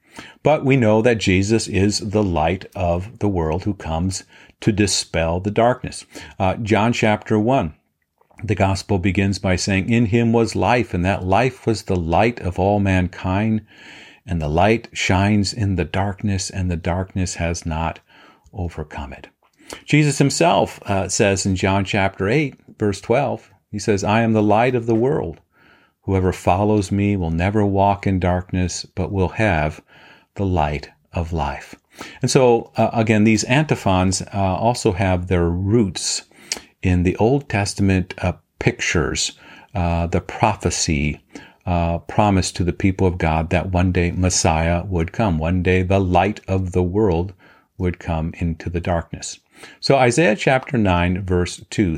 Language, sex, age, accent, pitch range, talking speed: English, male, 50-69, American, 90-110 Hz, 160 wpm